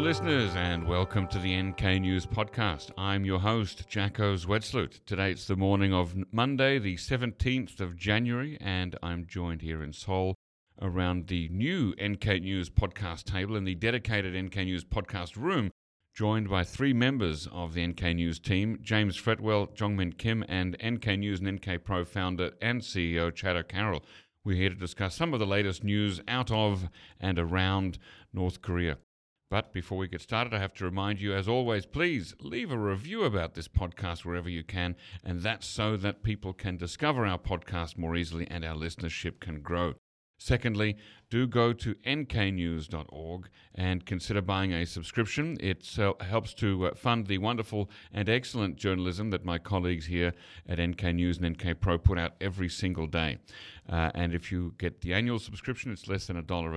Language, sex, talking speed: English, male, 175 wpm